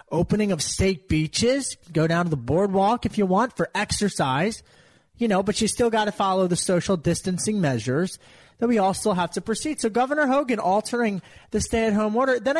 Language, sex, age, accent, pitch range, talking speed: English, male, 30-49, American, 190-260 Hz, 205 wpm